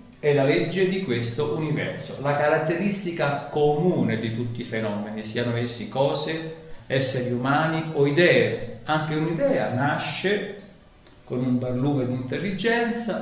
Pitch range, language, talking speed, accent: 130-180 Hz, Italian, 125 wpm, native